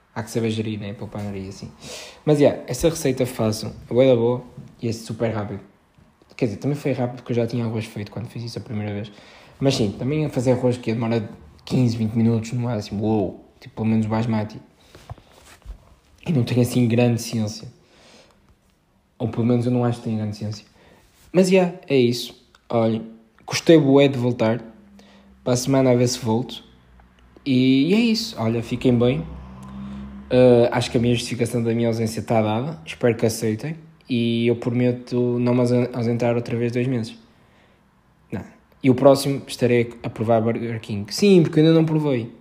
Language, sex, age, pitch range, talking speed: Portuguese, male, 20-39, 115-135 Hz, 195 wpm